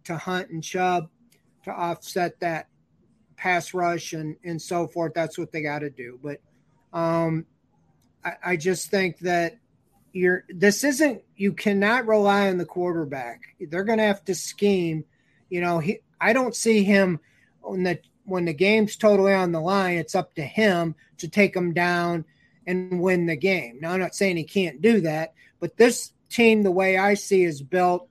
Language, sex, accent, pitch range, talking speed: English, male, American, 165-190 Hz, 180 wpm